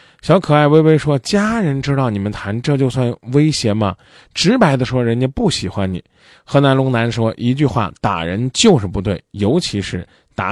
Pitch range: 115-155 Hz